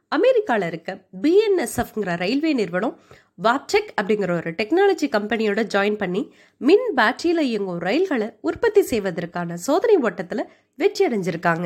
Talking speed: 115 wpm